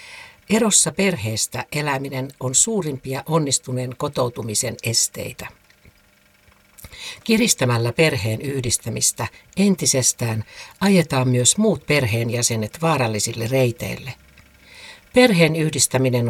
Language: Finnish